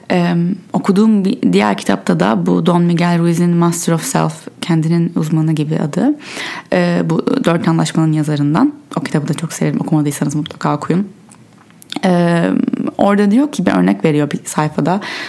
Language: Turkish